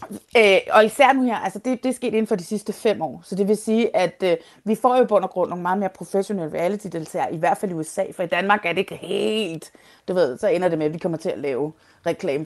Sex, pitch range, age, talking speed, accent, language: female, 165-215 Hz, 30-49, 285 wpm, native, Danish